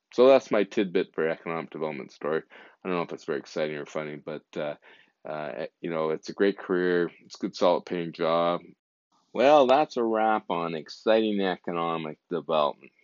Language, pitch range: English, 80-95 Hz